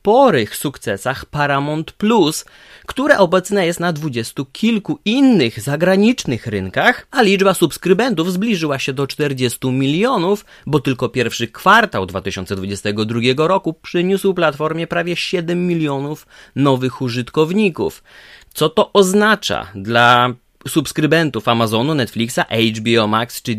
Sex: male